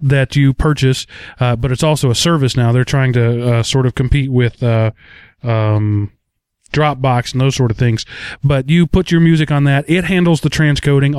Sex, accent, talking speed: male, American, 200 wpm